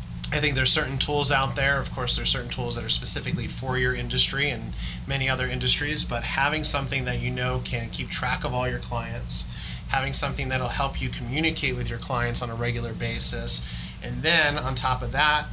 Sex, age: male, 30-49